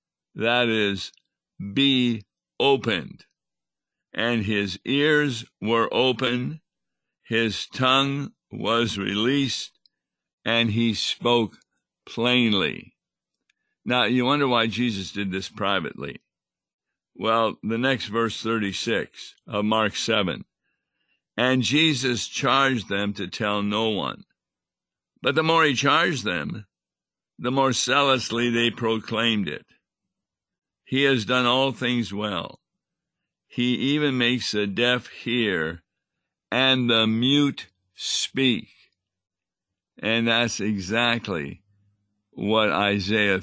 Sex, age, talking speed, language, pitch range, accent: male, 60-79, 100 wpm, English, 105-125 Hz, American